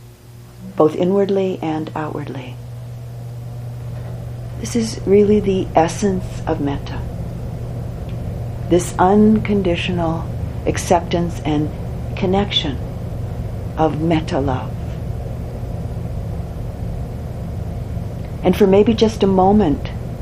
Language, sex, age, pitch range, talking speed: English, female, 50-69, 120-180 Hz, 75 wpm